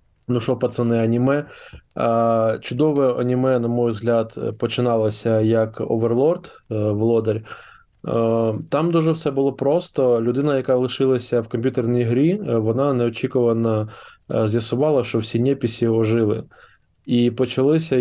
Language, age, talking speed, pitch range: Ukrainian, 20-39, 110 wpm, 115-135 Hz